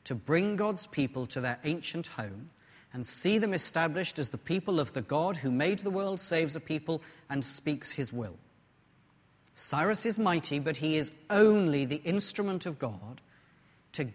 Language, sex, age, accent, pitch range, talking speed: English, male, 40-59, British, 125-155 Hz, 175 wpm